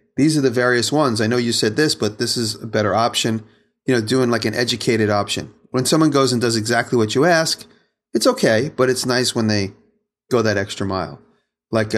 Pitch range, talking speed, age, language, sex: 105-125 Hz, 220 wpm, 30-49, English, male